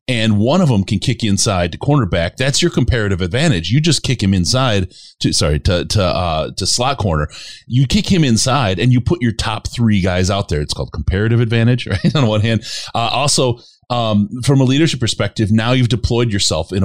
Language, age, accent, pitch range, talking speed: English, 30-49, American, 95-130 Hz, 215 wpm